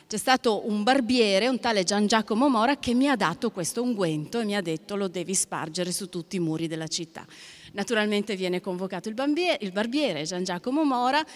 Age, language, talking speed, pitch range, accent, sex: 30-49, Italian, 190 wpm, 175-235 Hz, native, female